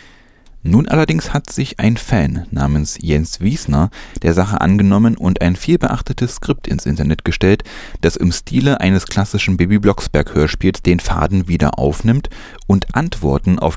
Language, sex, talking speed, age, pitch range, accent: German, male, 150 wpm, 30-49, 80-110 Hz, German